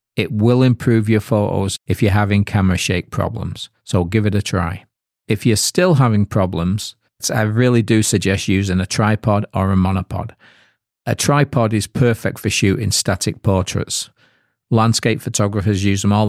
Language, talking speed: English, 160 wpm